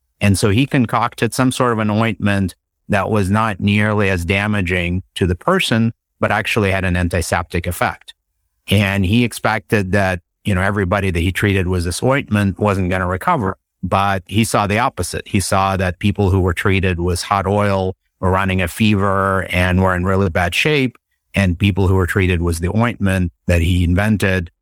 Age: 50-69